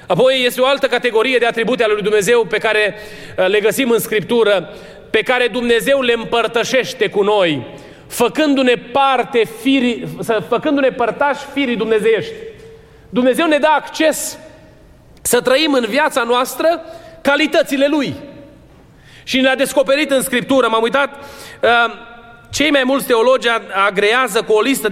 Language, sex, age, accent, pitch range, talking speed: Romanian, male, 30-49, native, 205-255 Hz, 135 wpm